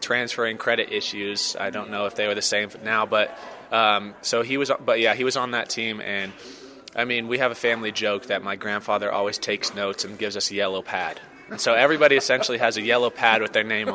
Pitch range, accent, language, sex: 100-120 Hz, American, English, male